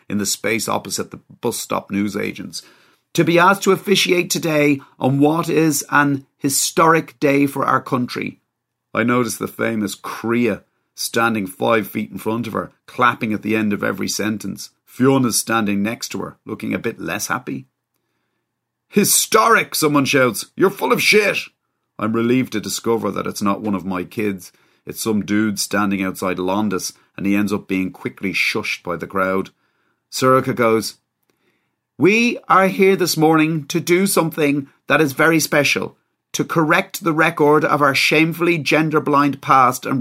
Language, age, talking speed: English, 30-49, 165 wpm